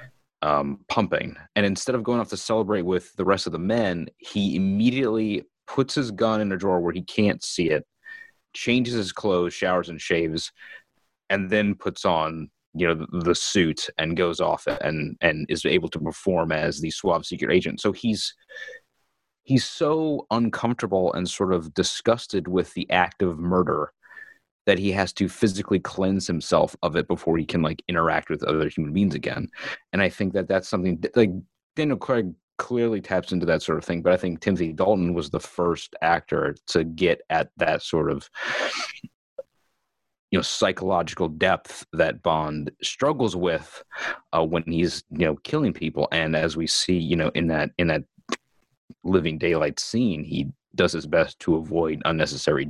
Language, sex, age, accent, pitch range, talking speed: English, male, 30-49, American, 85-110 Hz, 180 wpm